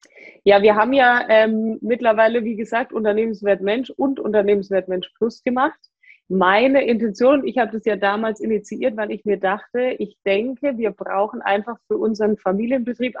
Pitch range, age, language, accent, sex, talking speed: 195-230 Hz, 20-39, German, German, female, 160 wpm